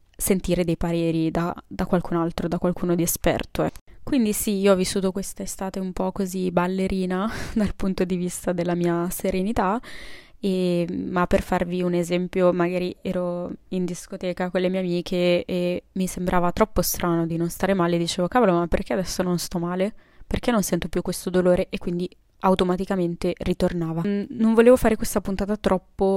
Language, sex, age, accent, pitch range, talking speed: Italian, female, 20-39, native, 175-195 Hz, 175 wpm